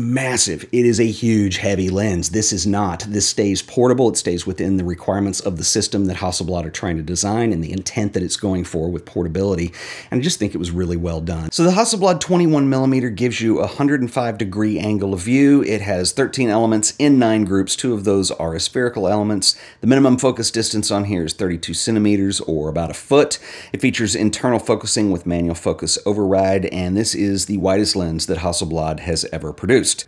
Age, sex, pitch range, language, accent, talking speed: 40-59, male, 85-110 Hz, English, American, 205 wpm